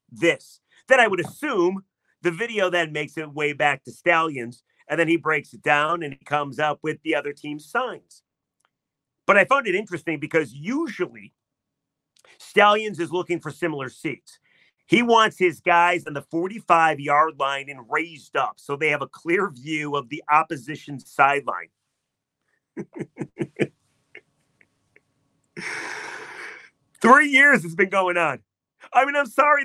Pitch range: 150-190 Hz